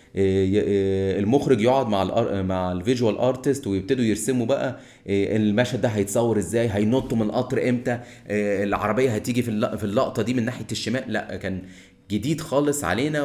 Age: 30-49